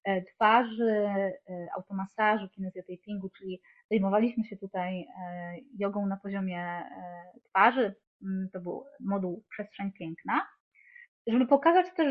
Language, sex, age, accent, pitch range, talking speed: Polish, female, 20-39, native, 200-255 Hz, 95 wpm